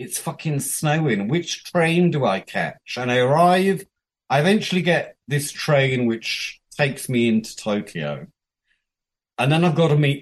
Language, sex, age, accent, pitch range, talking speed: English, male, 40-59, British, 145-195 Hz, 160 wpm